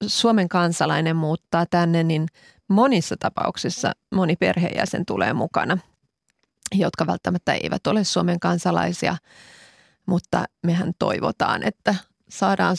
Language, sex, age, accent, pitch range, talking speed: Finnish, female, 30-49, native, 175-220 Hz, 105 wpm